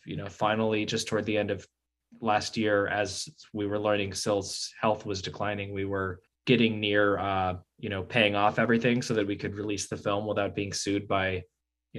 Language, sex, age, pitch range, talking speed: English, male, 20-39, 90-105 Hz, 200 wpm